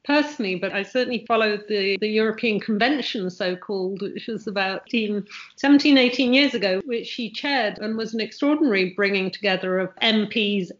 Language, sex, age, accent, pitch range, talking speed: English, female, 50-69, British, 195-240 Hz, 160 wpm